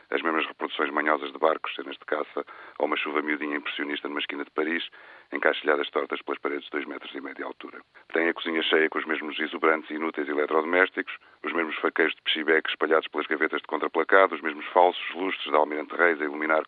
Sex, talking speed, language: male, 210 wpm, Portuguese